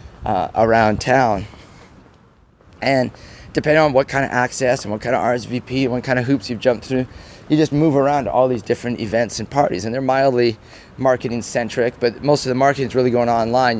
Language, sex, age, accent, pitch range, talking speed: English, male, 30-49, American, 110-135 Hz, 210 wpm